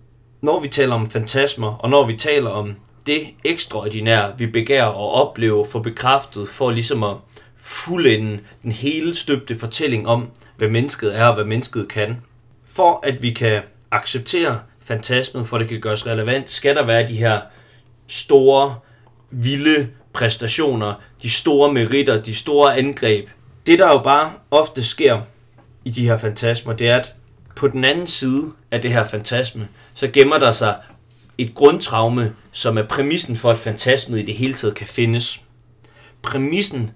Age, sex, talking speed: 30-49, male, 160 wpm